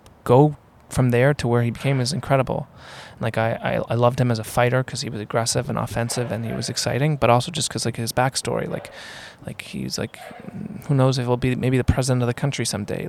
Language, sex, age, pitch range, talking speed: English, male, 20-39, 115-130 Hz, 240 wpm